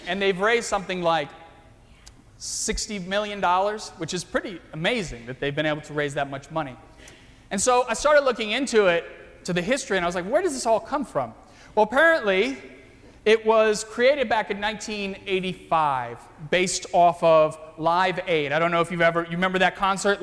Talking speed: 185 wpm